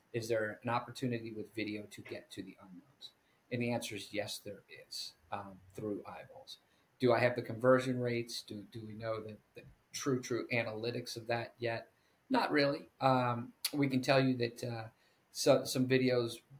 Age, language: 40-59, English